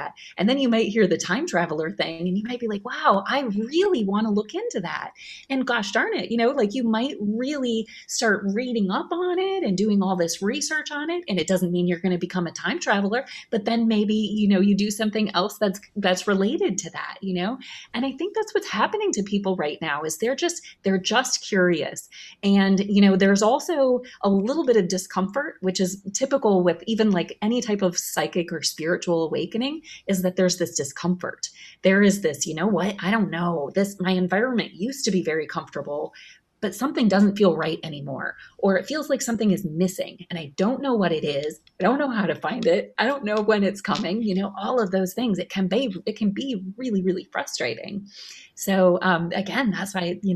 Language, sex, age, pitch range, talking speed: English, female, 30-49, 180-230 Hz, 220 wpm